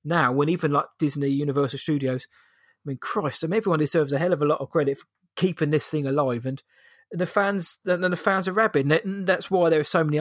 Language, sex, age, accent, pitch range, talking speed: English, male, 20-39, British, 145-175 Hz, 240 wpm